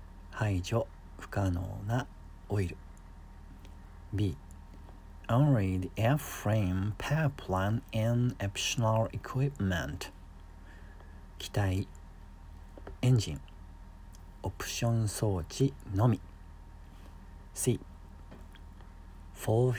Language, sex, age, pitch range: Japanese, male, 50-69, 80-105 Hz